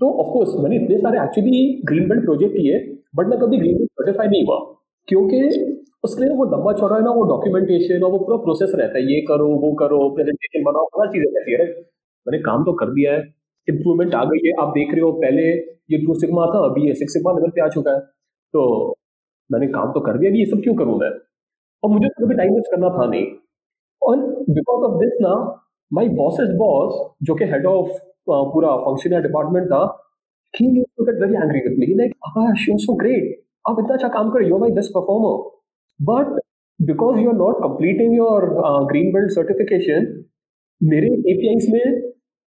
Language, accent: English, Indian